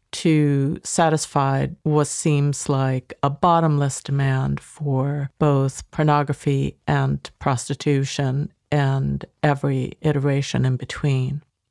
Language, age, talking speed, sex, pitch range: English, 50-69, 90 wpm, female, 140-165 Hz